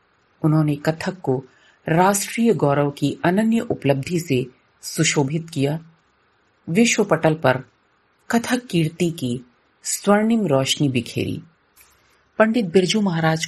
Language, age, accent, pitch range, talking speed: Hindi, 50-69, native, 145-195 Hz, 100 wpm